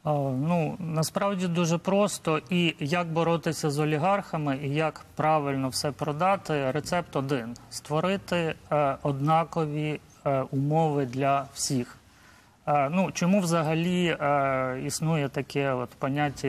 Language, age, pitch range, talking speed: Ukrainian, 30-49, 135-165 Hz, 125 wpm